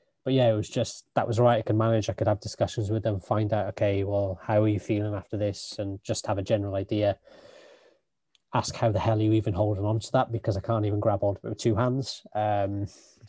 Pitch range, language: 105-120 Hz, English